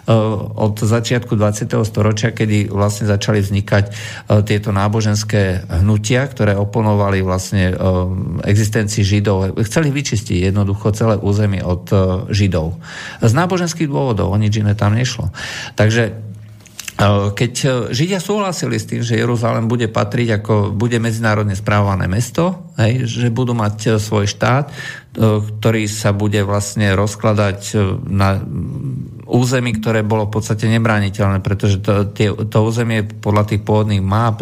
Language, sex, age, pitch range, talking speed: Slovak, male, 50-69, 100-120 Hz, 125 wpm